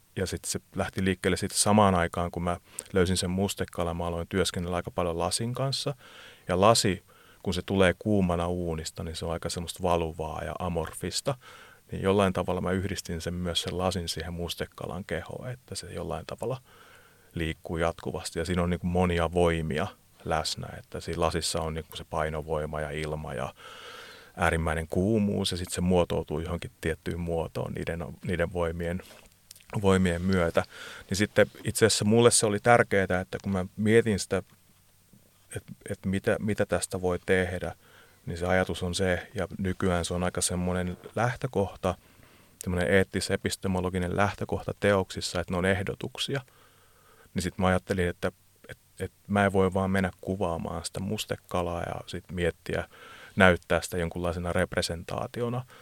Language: Finnish